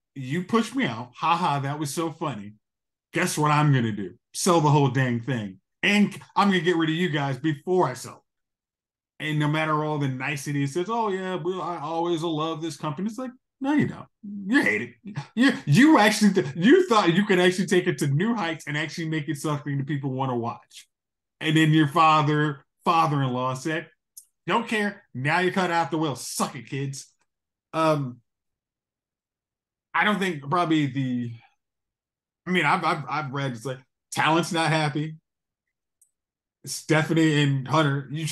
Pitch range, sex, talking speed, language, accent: 135-170 Hz, male, 190 wpm, English, American